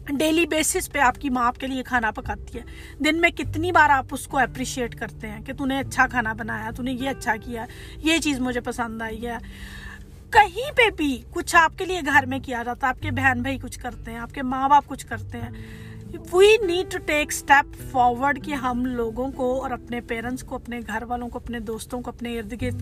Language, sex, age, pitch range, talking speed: Urdu, female, 40-59, 250-305 Hz, 230 wpm